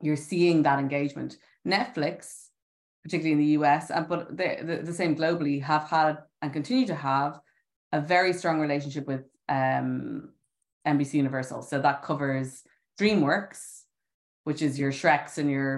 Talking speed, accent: 150 wpm, Irish